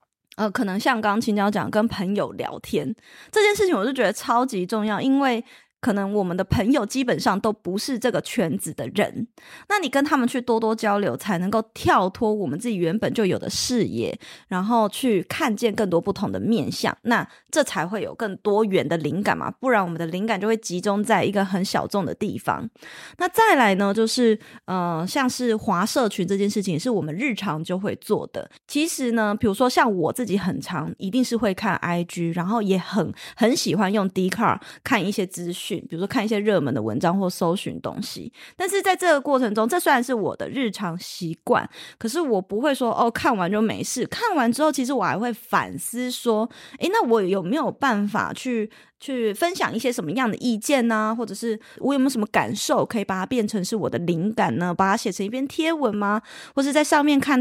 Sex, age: female, 20-39